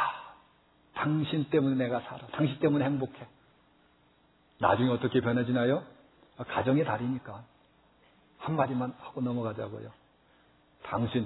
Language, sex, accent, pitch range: Korean, male, native, 115-165 Hz